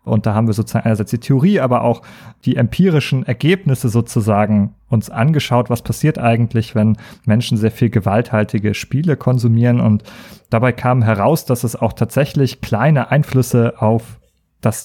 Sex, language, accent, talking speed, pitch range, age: male, German, German, 155 wpm, 115-145 Hz, 30-49